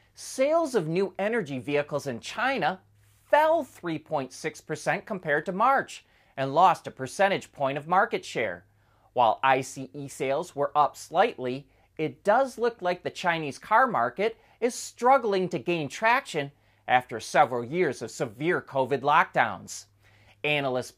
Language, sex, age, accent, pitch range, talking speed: English, male, 30-49, American, 125-190 Hz, 135 wpm